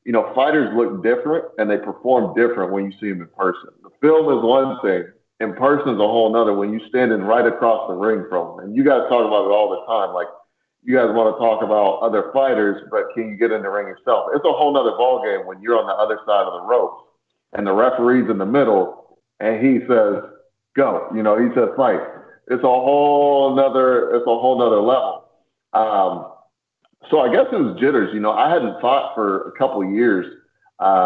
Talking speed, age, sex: 230 wpm, 30-49, male